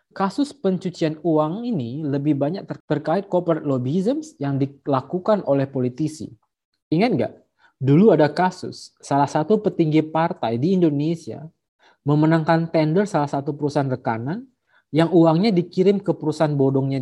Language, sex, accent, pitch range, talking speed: Indonesian, male, native, 140-180 Hz, 125 wpm